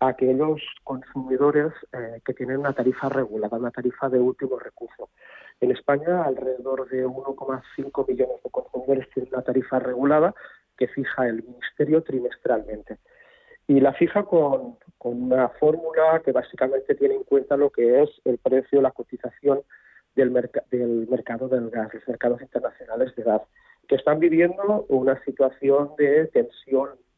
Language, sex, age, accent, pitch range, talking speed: Spanish, male, 30-49, Spanish, 130-160 Hz, 150 wpm